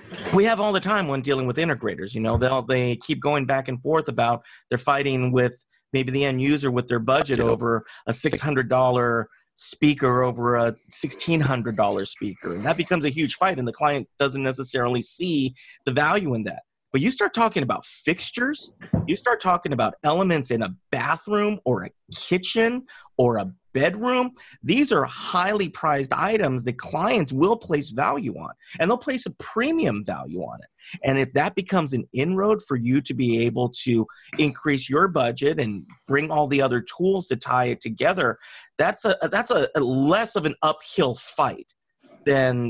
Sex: male